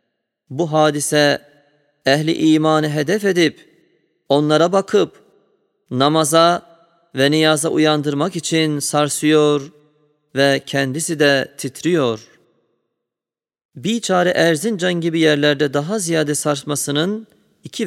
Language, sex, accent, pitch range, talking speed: Turkish, male, native, 135-165 Hz, 90 wpm